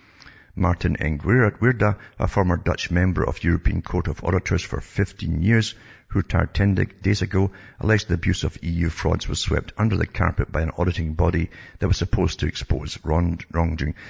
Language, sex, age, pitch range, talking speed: English, male, 50-69, 85-100 Hz, 175 wpm